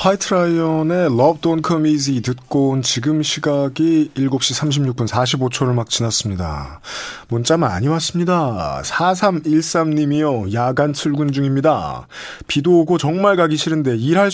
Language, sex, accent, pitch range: Korean, male, native, 130-170 Hz